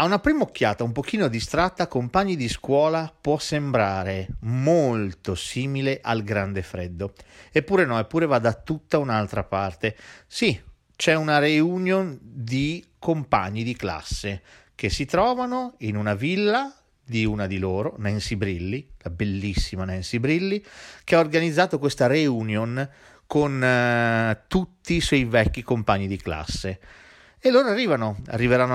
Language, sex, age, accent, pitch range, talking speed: Italian, male, 40-59, native, 105-145 Hz, 140 wpm